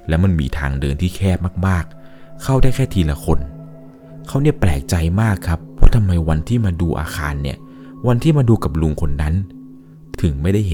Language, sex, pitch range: Thai, male, 75-105 Hz